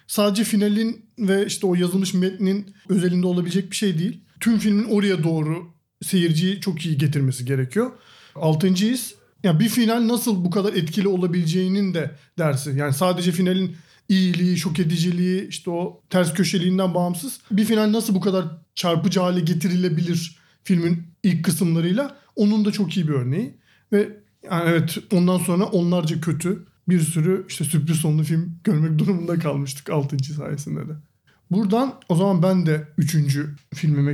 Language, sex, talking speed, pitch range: Turkish, male, 150 wpm, 155-195 Hz